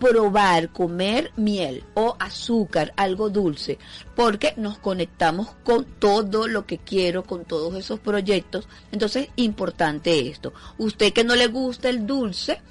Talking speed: 135 wpm